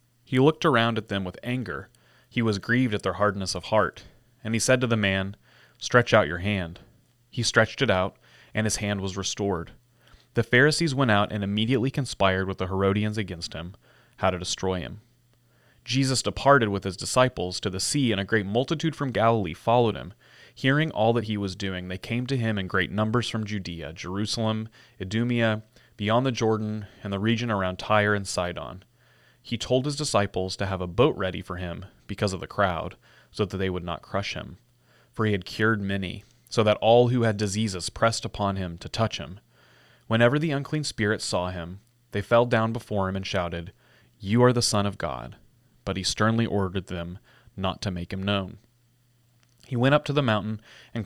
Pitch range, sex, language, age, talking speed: 95-120 Hz, male, English, 30-49, 195 wpm